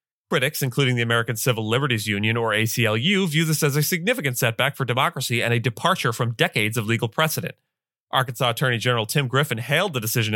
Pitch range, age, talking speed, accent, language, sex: 115-140 Hz, 30-49, 190 wpm, American, English, male